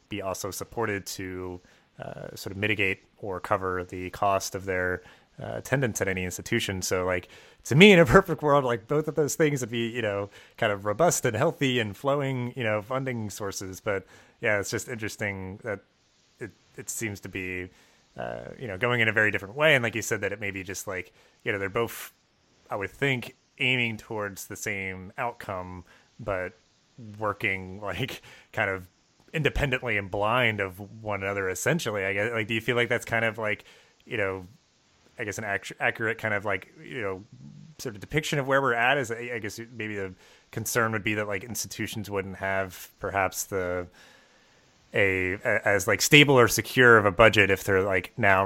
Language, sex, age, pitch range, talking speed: English, male, 30-49, 95-120 Hz, 195 wpm